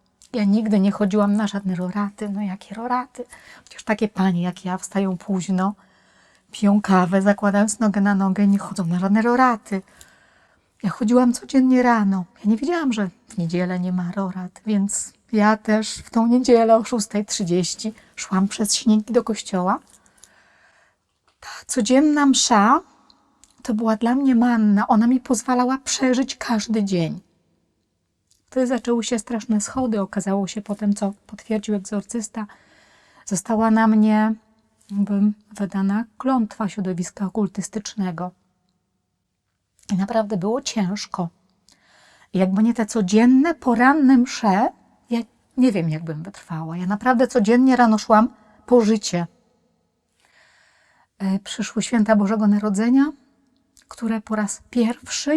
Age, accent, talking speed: 30-49, native, 130 wpm